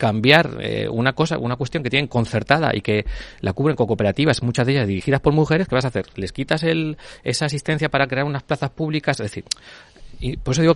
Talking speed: 230 wpm